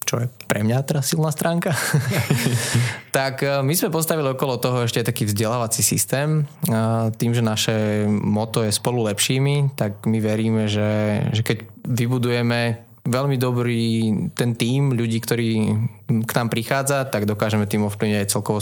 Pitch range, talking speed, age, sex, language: 110-130 Hz, 150 wpm, 20-39, male, Slovak